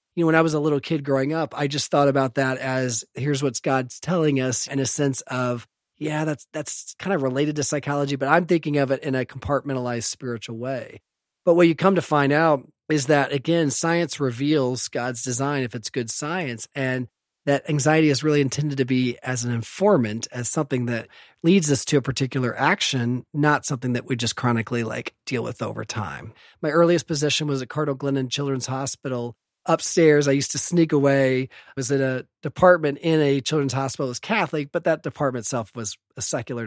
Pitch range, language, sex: 125-150 Hz, English, male